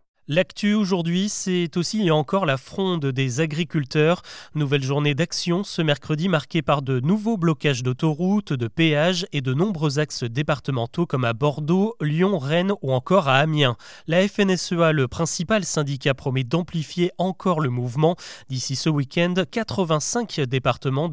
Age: 30-49